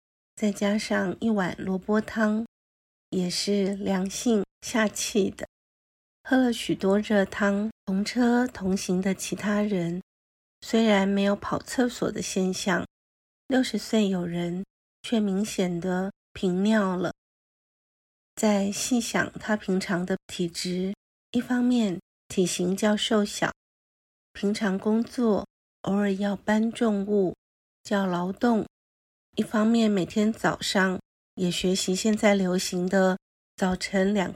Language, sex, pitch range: Chinese, female, 185-215 Hz